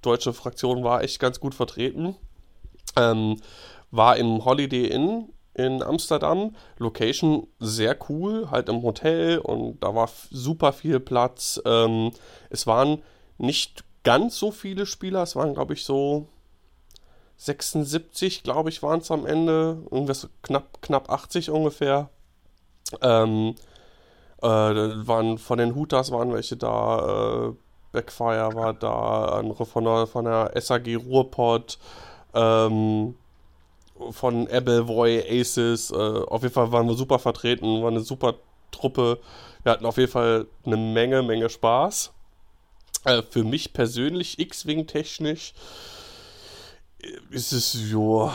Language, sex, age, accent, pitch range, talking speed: German, male, 30-49, German, 115-145 Hz, 130 wpm